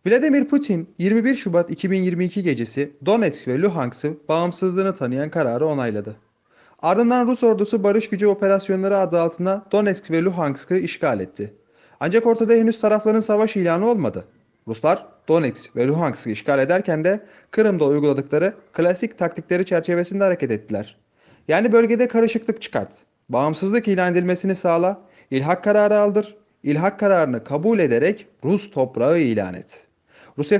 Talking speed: 130 wpm